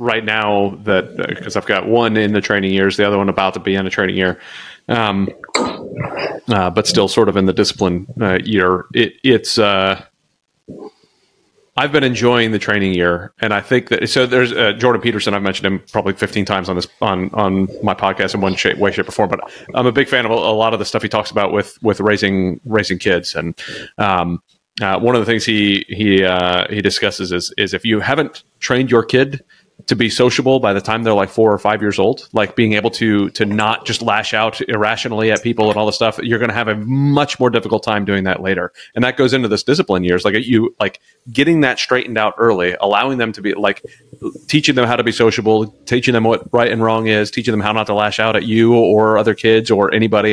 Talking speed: 235 wpm